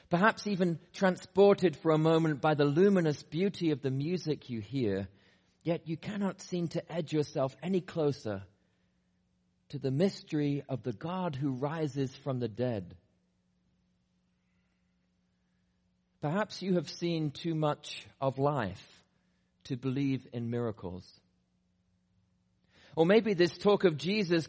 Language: English